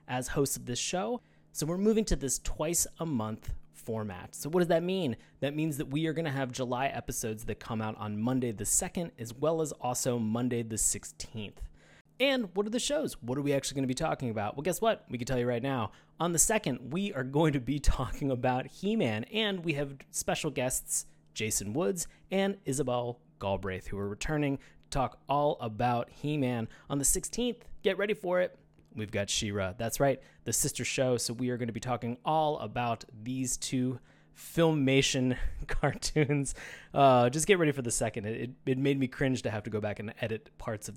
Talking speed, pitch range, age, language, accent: 210 wpm, 115-155 Hz, 20-39, English, American